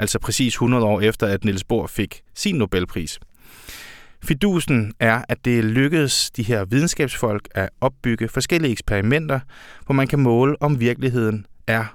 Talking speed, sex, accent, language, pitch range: 150 wpm, male, native, Danish, 105-135 Hz